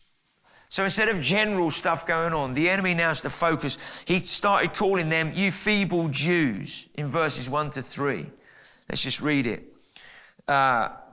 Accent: British